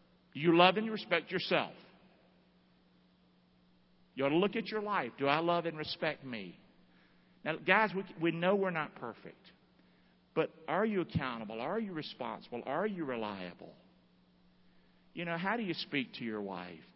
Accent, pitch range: American, 155-205 Hz